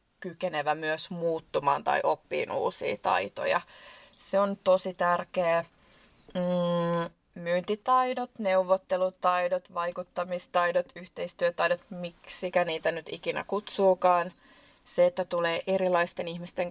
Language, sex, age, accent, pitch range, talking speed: Finnish, female, 20-39, native, 170-195 Hz, 90 wpm